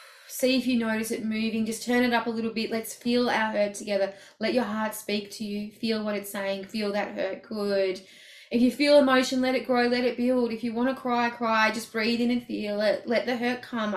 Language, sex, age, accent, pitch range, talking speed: English, female, 20-39, Australian, 195-240 Hz, 250 wpm